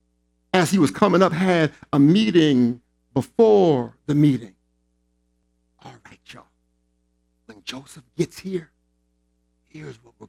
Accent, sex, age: American, male, 50-69